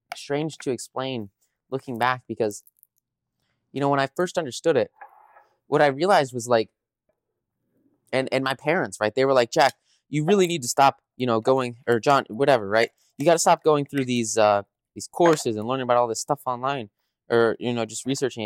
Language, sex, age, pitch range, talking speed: English, male, 20-39, 115-145 Hz, 200 wpm